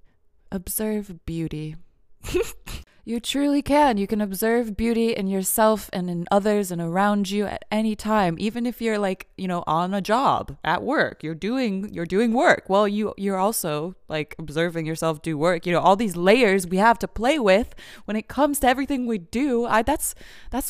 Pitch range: 160-225 Hz